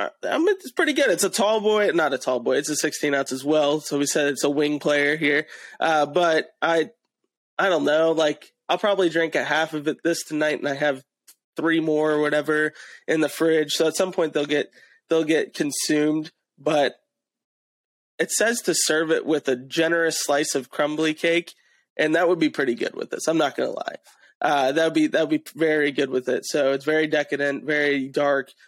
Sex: male